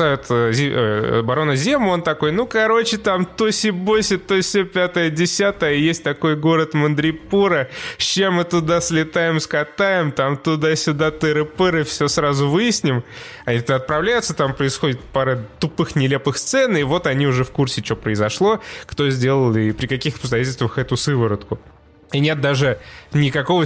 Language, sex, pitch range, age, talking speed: Russian, male, 120-160 Hz, 20-39, 135 wpm